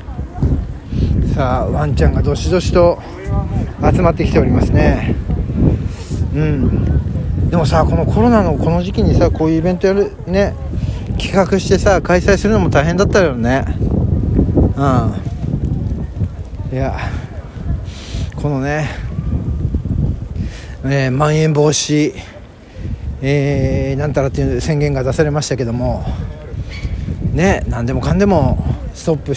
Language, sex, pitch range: Japanese, male, 95-150 Hz